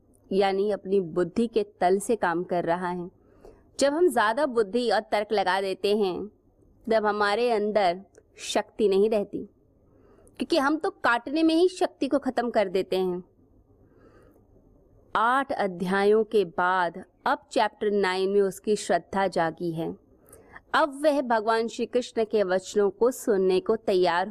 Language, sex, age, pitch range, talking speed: Hindi, female, 20-39, 190-245 Hz, 150 wpm